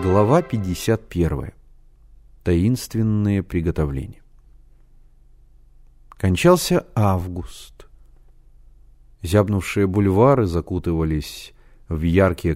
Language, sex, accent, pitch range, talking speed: Russian, male, native, 90-125 Hz, 55 wpm